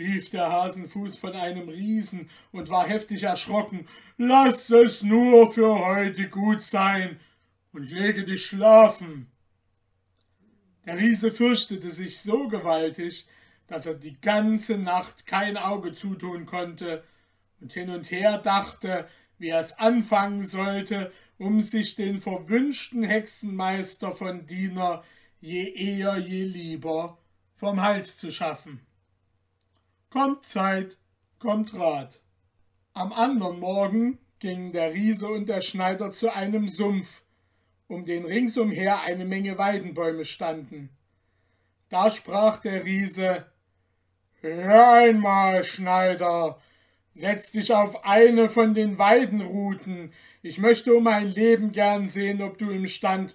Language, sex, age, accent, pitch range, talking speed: German, male, 60-79, German, 165-210 Hz, 125 wpm